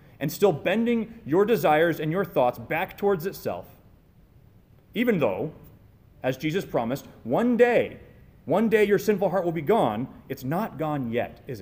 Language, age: English, 30-49